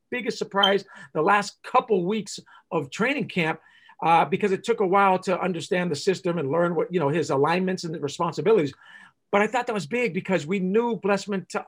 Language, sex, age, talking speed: English, male, 50-69, 200 wpm